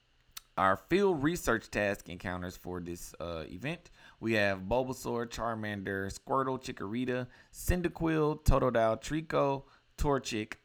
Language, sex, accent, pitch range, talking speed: English, male, American, 90-125 Hz, 105 wpm